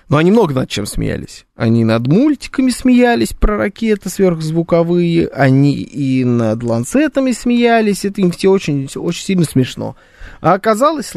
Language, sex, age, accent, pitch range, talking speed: Russian, male, 20-39, native, 145-215 Hz, 145 wpm